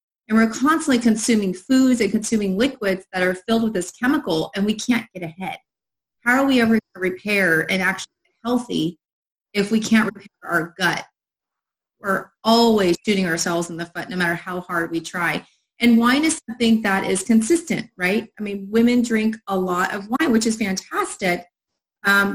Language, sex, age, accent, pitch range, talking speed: English, female, 30-49, American, 175-225 Hz, 185 wpm